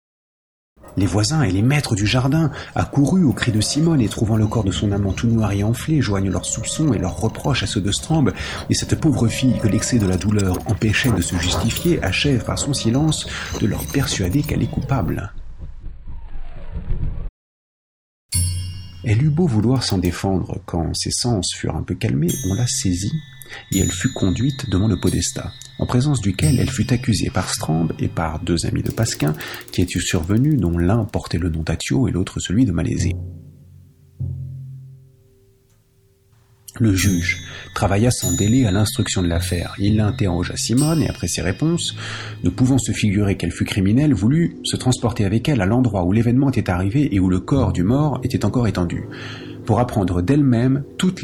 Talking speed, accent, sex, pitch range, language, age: 180 wpm, French, male, 95-130 Hz, French, 40-59